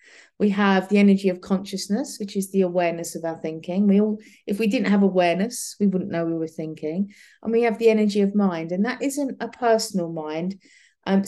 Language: English